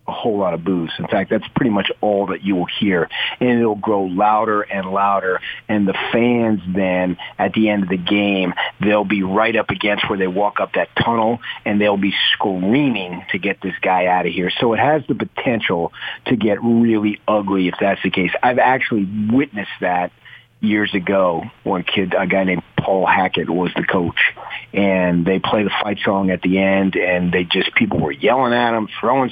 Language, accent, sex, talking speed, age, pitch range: English, American, male, 205 wpm, 40-59, 90-105 Hz